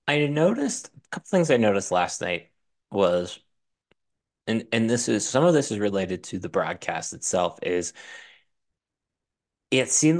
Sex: male